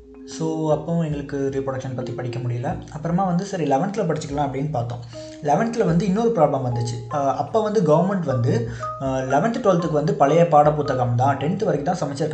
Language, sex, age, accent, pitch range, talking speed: Tamil, male, 20-39, native, 135-175 Hz, 155 wpm